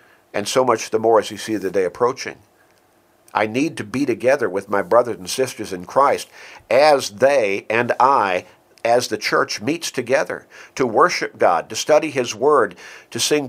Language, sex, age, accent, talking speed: English, male, 50-69, American, 180 wpm